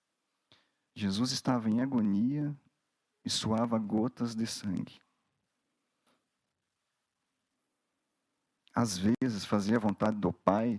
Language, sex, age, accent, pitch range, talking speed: Portuguese, male, 50-69, Brazilian, 95-120 Hz, 90 wpm